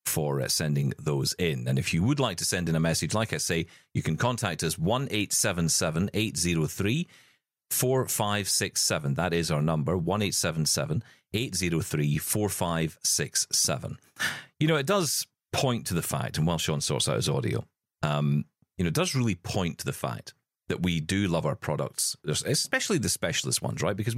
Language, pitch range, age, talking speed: English, 80-120 Hz, 40-59, 170 wpm